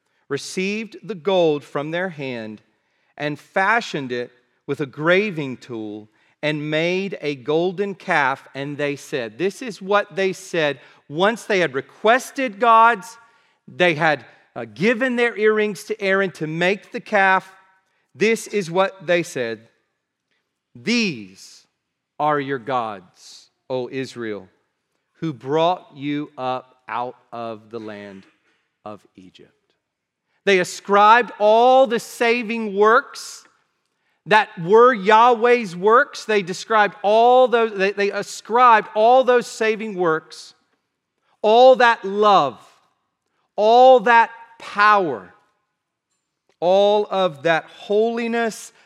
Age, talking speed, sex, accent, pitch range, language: 40-59, 115 wpm, male, American, 145-220 Hz, English